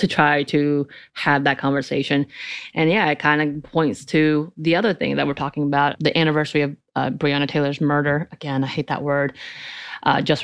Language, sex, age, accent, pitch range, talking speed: English, female, 30-49, American, 145-165 Hz, 195 wpm